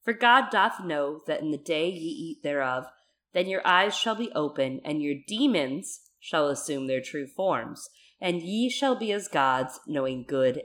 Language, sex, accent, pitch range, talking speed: English, female, American, 135-195 Hz, 185 wpm